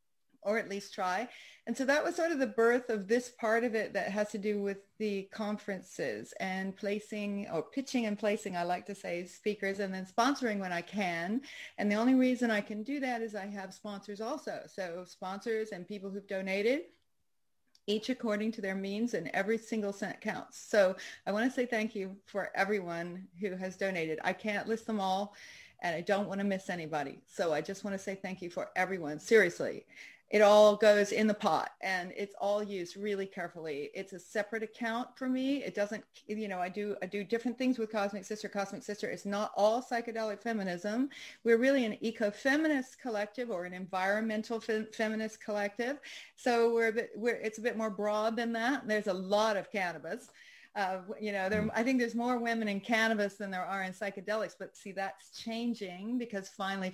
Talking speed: 200 wpm